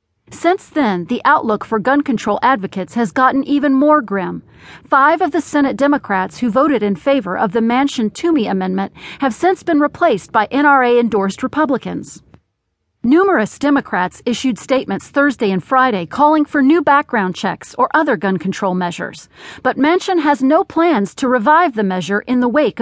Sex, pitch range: female, 210-290 Hz